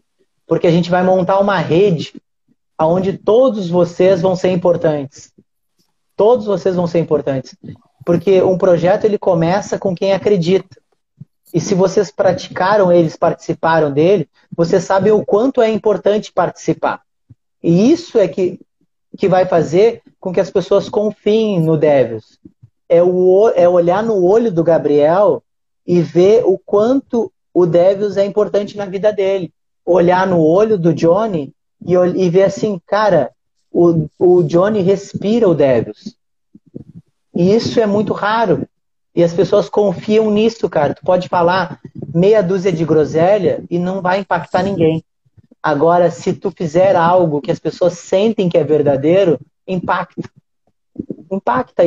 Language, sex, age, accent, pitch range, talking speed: Portuguese, male, 30-49, Brazilian, 170-205 Hz, 145 wpm